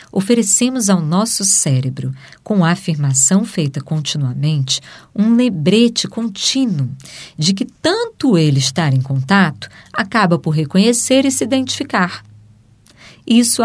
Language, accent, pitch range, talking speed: Portuguese, Brazilian, 145-220 Hz, 115 wpm